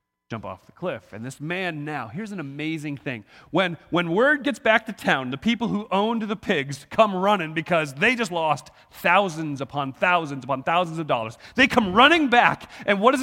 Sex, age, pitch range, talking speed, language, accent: male, 30-49, 100-170 Hz, 205 wpm, English, American